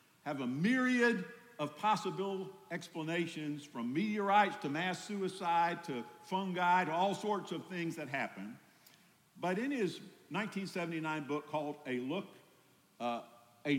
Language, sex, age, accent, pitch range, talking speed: English, male, 50-69, American, 155-210 Hz, 130 wpm